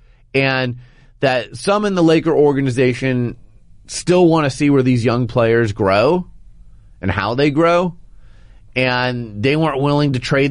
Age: 30-49